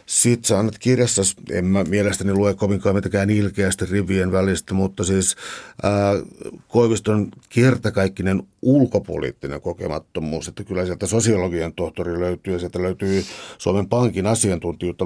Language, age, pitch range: Finnish, 60-79, 90-100 Hz